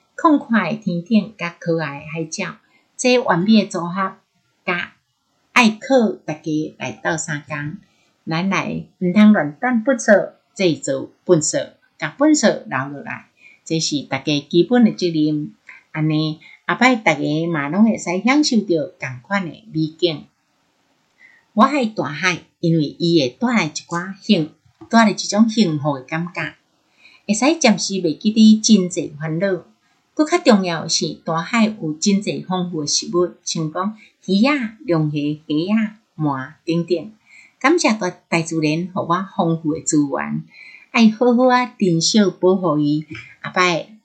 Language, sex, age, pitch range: Chinese, female, 60-79, 160-215 Hz